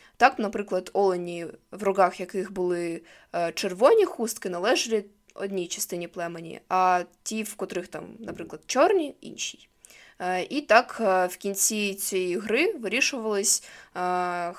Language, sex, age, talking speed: Ukrainian, female, 20-39, 120 wpm